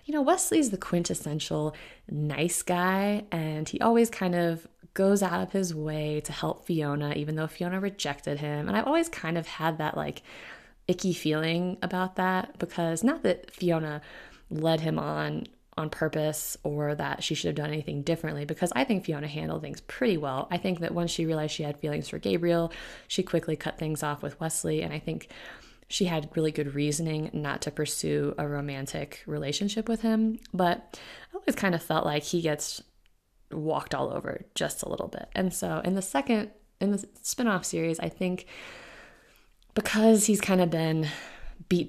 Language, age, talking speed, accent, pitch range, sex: English, 20-39, 185 wpm, American, 150-185 Hz, female